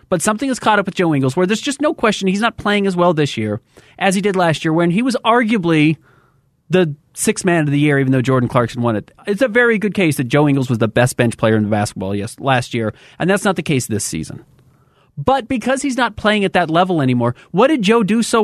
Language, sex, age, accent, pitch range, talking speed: English, male, 30-49, American, 135-200 Hz, 255 wpm